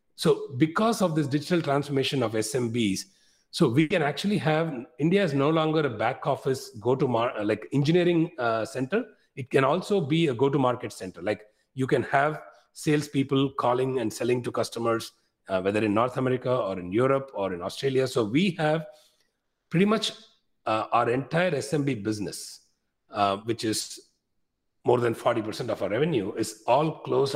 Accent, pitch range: Indian, 110-155 Hz